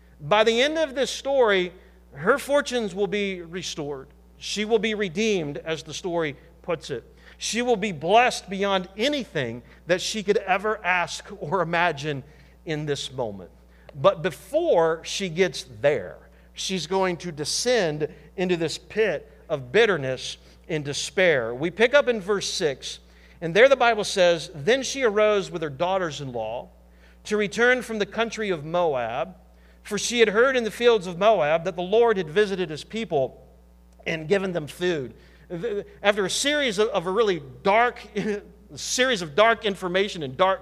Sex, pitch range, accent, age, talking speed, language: male, 160-225 Hz, American, 50-69, 160 wpm, English